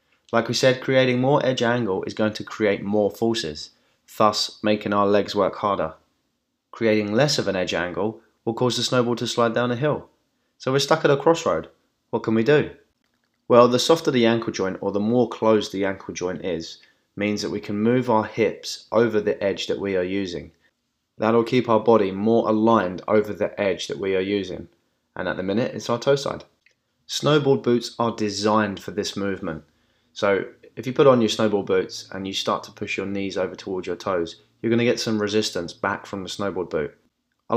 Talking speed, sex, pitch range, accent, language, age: 210 wpm, male, 100-115 Hz, British, English, 20-39